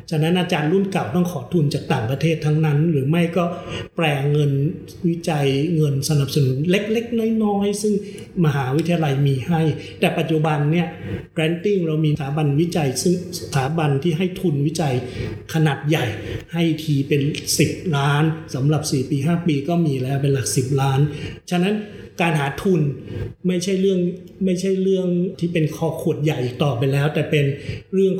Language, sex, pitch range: Thai, male, 140-170 Hz